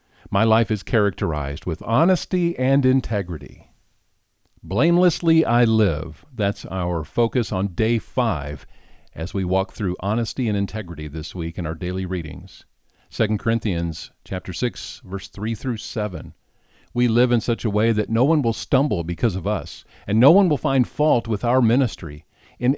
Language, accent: English, American